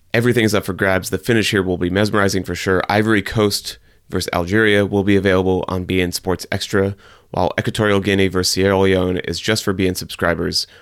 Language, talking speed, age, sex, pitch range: English, 195 wpm, 30-49, male, 90-105 Hz